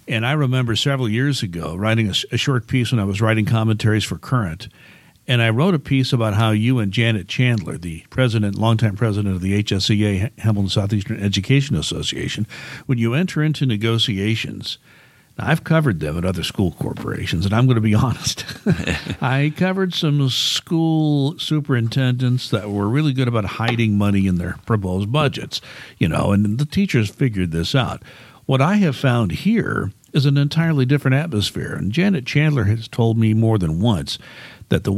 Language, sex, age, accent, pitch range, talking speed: English, male, 60-79, American, 105-135 Hz, 175 wpm